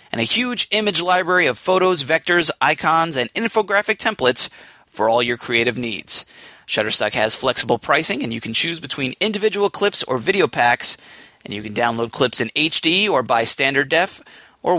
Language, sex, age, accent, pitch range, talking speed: English, male, 30-49, American, 130-195 Hz, 175 wpm